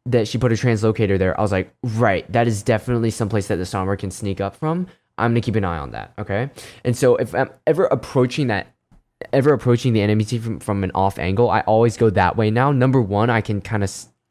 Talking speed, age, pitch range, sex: 250 wpm, 10-29, 100-125 Hz, male